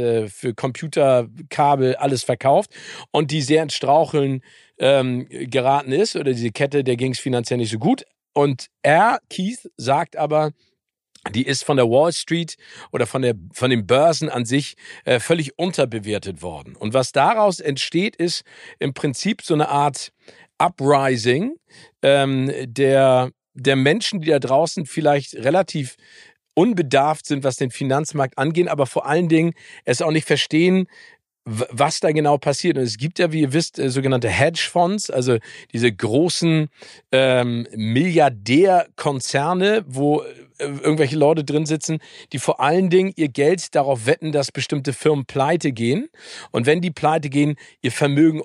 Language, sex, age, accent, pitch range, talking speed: German, male, 50-69, German, 130-160 Hz, 150 wpm